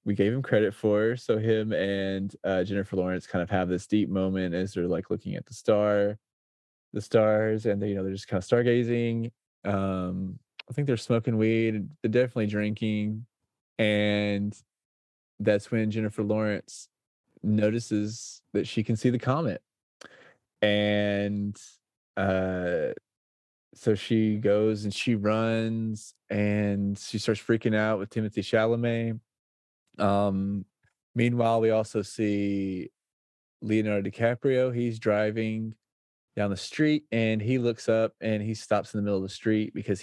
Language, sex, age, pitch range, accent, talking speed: English, male, 20-39, 100-110 Hz, American, 150 wpm